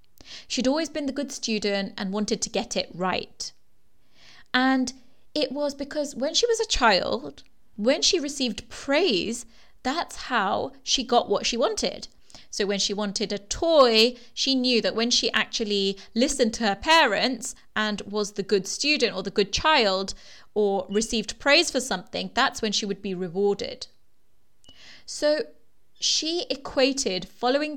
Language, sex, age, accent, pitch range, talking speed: English, female, 30-49, British, 210-265 Hz, 155 wpm